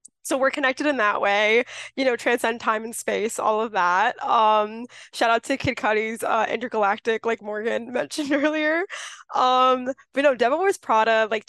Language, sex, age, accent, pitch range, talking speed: English, female, 20-39, American, 215-260 Hz, 180 wpm